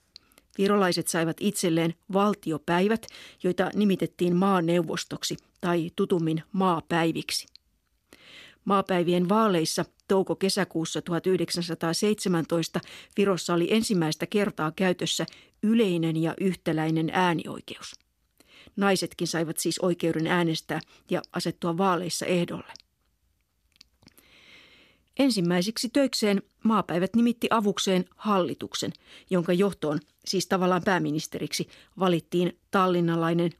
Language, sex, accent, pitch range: Finnish, female, native, 165-200 Hz